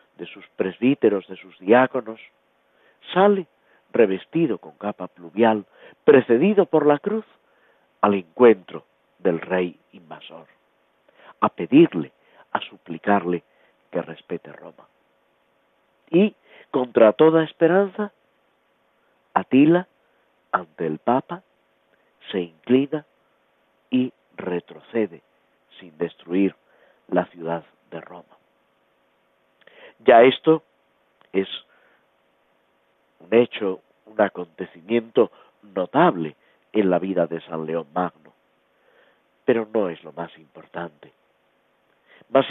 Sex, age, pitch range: male, 50-69, 90-140 Hz